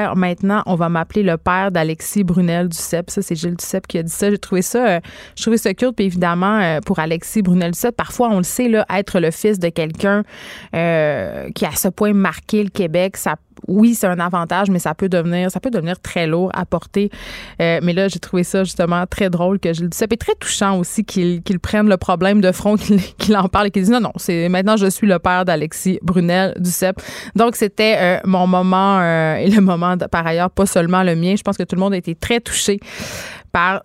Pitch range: 175-205 Hz